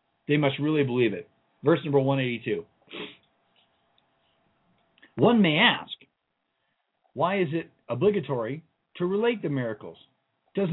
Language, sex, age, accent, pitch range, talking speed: English, male, 50-69, American, 130-170 Hz, 110 wpm